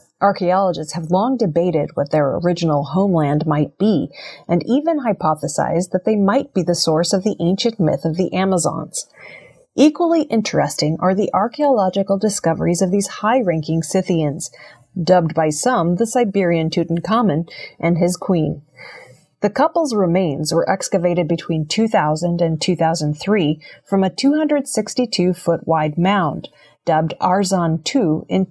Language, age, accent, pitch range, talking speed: English, 30-49, American, 165-205 Hz, 130 wpm